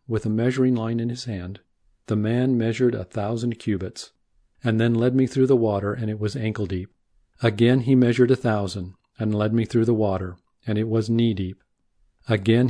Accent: American